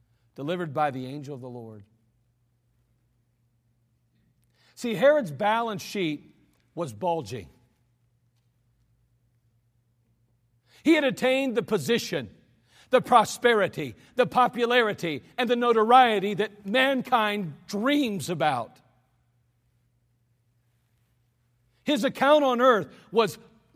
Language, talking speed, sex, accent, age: English, 85 wpm, male, American, 50-69